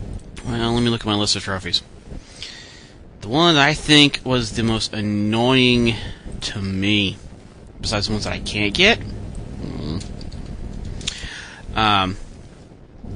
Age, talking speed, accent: 30-49, 130 wpm, American